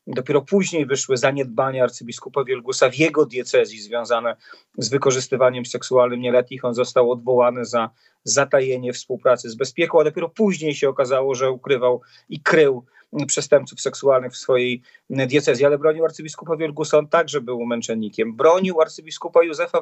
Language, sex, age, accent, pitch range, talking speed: Polish, male, 40-59, native, 130-170 Hz, 140 wpm